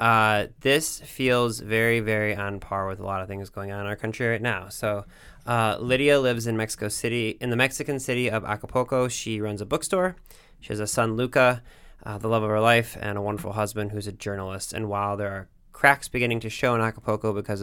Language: English